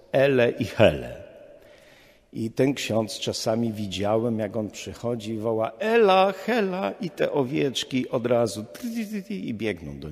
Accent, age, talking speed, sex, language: native, 50-69, 160 wpm, male, Polish